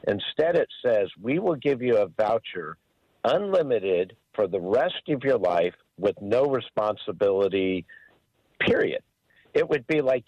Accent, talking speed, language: American, 140 wpm, English